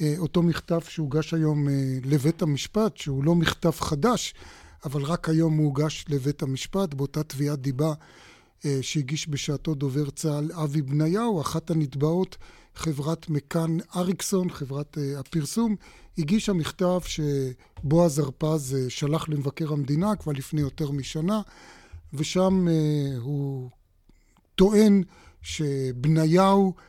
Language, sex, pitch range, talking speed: Hebrew, male, 145-175 Hz, 105 wpm